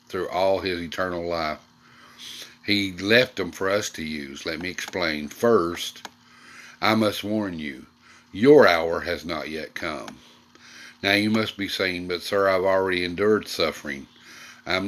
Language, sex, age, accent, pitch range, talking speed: English, male, 50-69, American, 85-105 Hz, 155 wpm